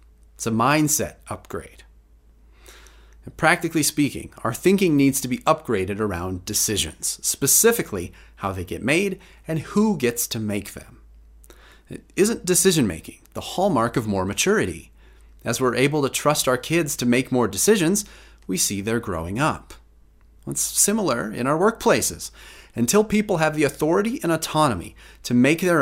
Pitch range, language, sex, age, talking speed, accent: 95-150 Hz, English, male, 30-49, 145 wpm, American